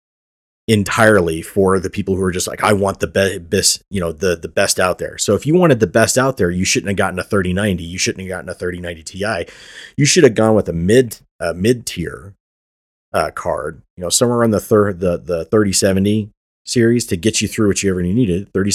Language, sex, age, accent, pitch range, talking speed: English, male, 30-49, American, 90-110 Hz, 235 wpm